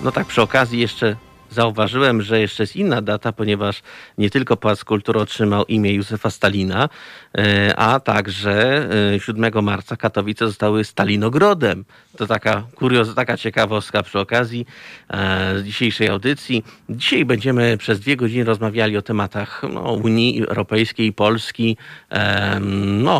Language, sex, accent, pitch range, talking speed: Polish, male, native, 100-115 Hz, 135 wpm